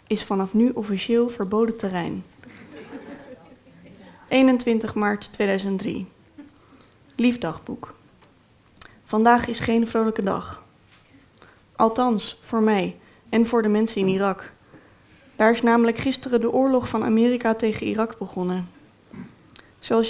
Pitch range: 200-240 Hz